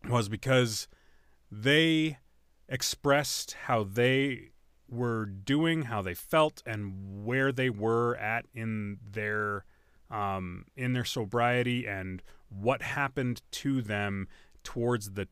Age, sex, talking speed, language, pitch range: 30-49, male, 115 wpm, English, 90-125 Hz